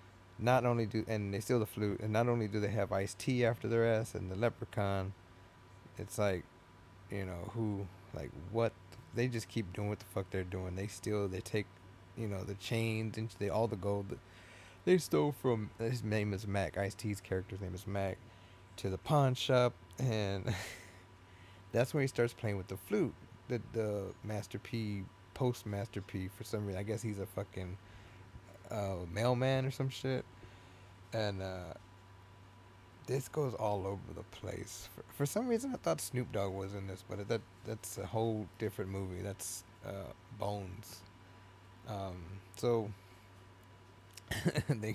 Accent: American